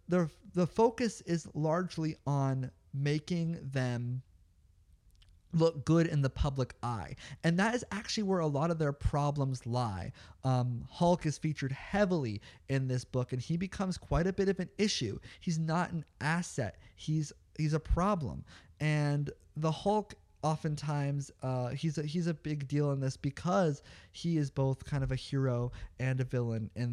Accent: American